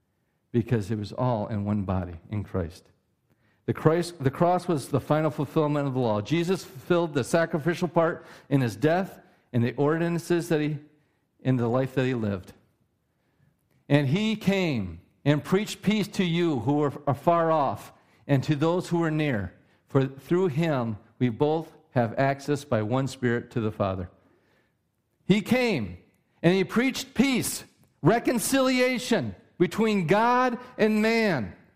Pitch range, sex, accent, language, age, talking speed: 125-195 Hz, male, American, English, 50-69, 155 wpm